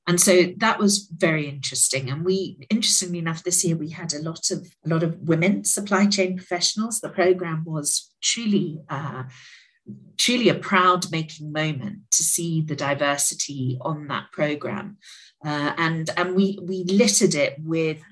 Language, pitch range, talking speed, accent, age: English, 150-190 Hz, 160 wpm, British, 50-69